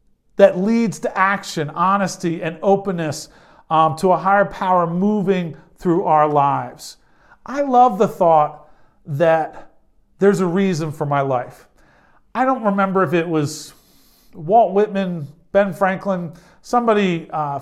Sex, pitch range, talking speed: male, 165-215 Hz, 135 wpm